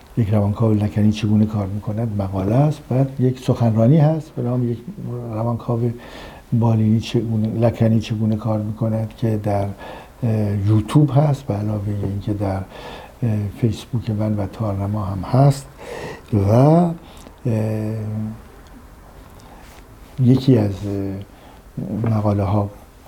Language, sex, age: Persian, male, 60-79